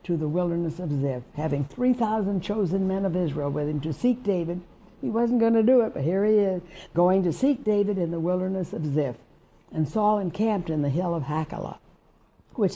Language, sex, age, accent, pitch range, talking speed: English, female, 60-79, American, 150-190 Hz, 205 wpm